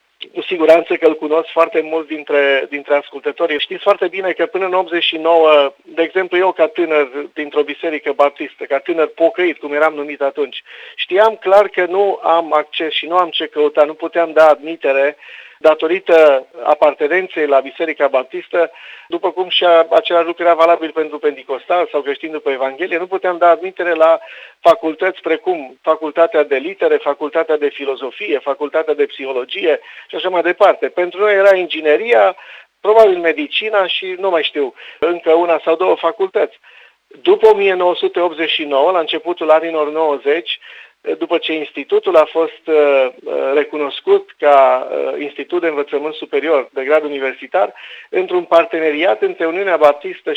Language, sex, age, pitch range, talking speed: Romanian, male, 50-69, 155-195 Hz, 150 wpm